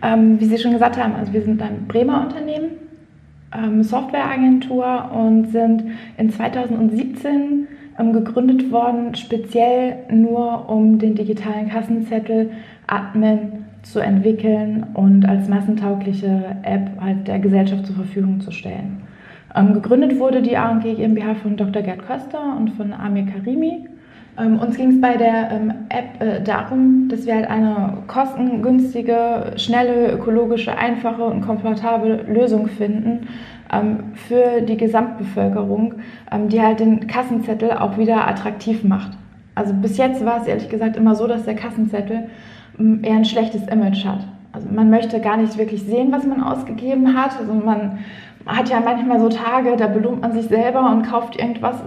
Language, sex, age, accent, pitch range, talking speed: German, female, 20-39, German, 215-235 Hz, 150 wpm